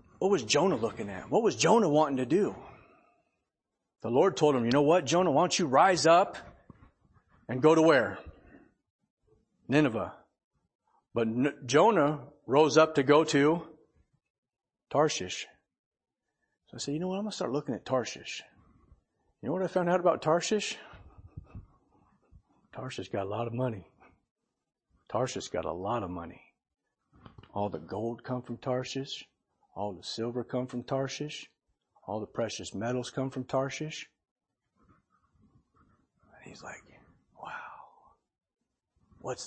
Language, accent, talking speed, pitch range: English, American, 145 wpm, 125-155 Hz